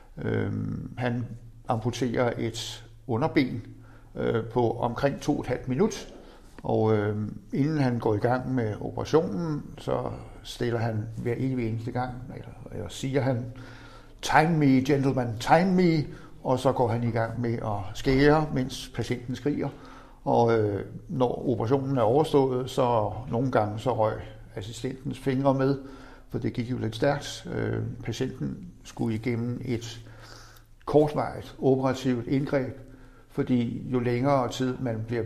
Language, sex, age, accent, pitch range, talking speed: Danish, male, 60-79, native, 115-130 Hz, 140 wpm